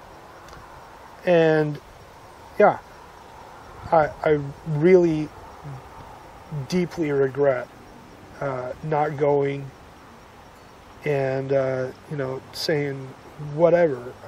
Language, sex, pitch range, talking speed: English, male, 140-190 Hz, 65 wpm